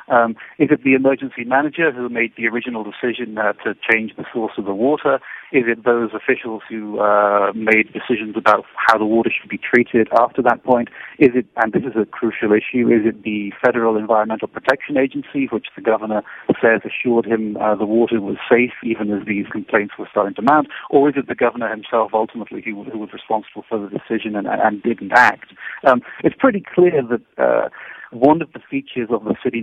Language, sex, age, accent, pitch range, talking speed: English, male, 40-59, British, 105-125 Hz, 205 wpm